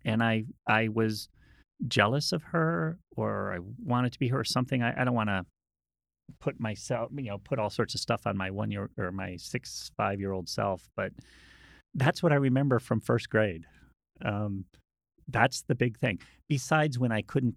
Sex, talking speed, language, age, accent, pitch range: male, 195 wpm, English, 40-59, American, 100-135 Hz